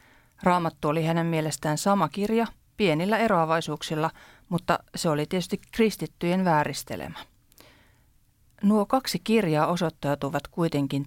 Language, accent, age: Finnish, native, 40-59